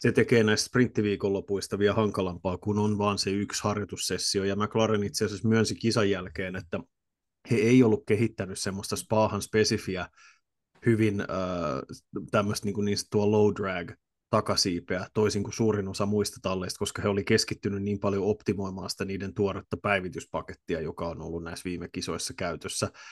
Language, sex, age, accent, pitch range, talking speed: Finnish, male, 30-49, native, 100-110 Hz, 160 wpm